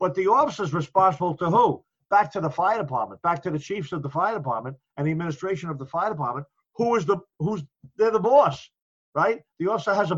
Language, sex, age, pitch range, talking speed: English, male, 50-69, 145-180 Hz, 230 wpm